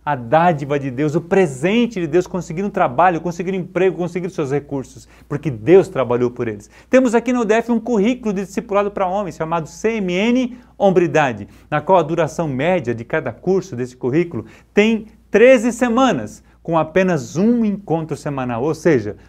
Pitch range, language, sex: 130-215 Hz, Portuguese, male